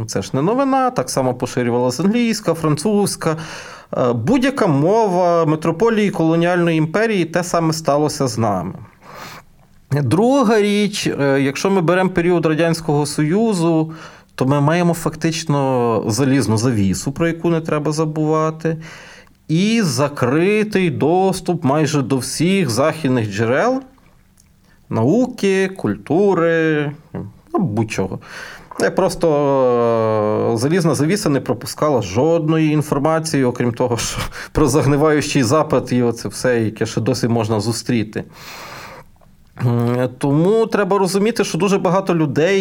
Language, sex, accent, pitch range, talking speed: Ukrainian, male, native, 125-175 Hz, 110 wpm